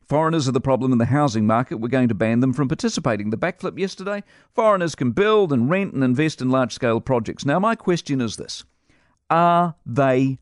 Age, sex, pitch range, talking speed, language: 50-69, male, 110-155 Hz, 200 wpm, English